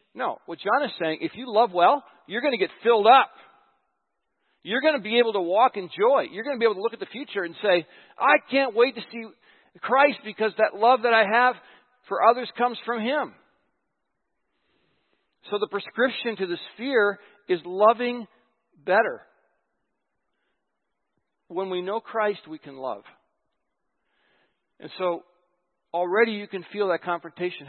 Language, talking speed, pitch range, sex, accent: English, 165 wpm, 155-230 Hz, male, American